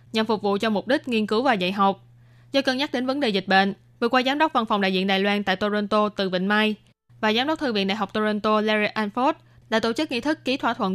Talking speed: 285 wpm